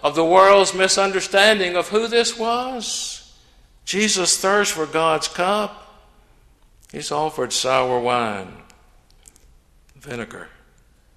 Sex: male